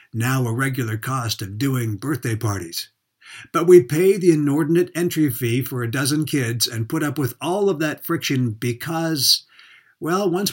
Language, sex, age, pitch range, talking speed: English, male, 60-79, 115-150 Hz, 170 wpm